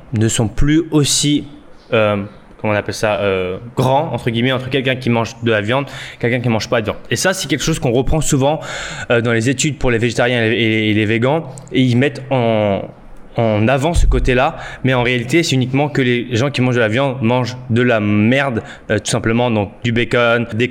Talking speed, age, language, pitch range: 230 wpm, 20-39, French, 115-140 Hz